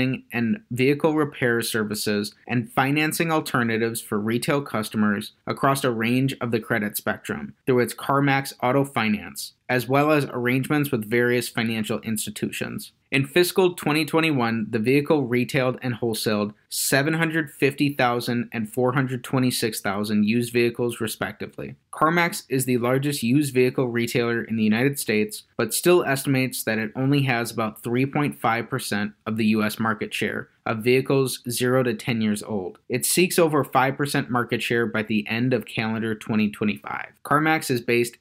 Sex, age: male, 30-49